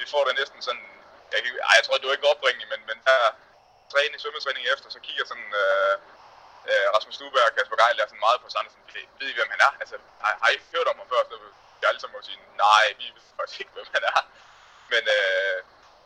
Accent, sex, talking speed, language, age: native, male, 240 wpm, Danish, 20-39